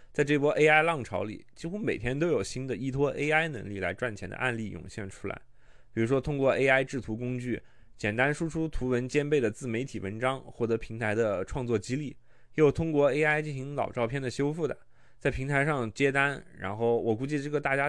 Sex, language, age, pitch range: male, Chinese, 20-39, 115-145 Hz